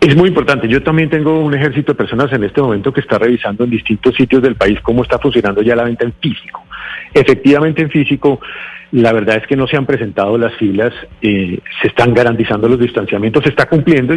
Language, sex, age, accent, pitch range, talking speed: Spanish, male, 40-59, Colombian, 120-150 Hz, 215 wpm